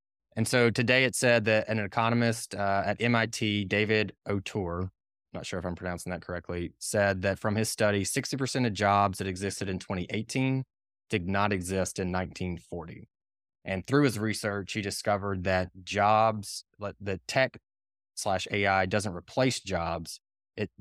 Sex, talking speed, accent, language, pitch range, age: male, 155 wpm, American, English, 95-115 Hz, 20-39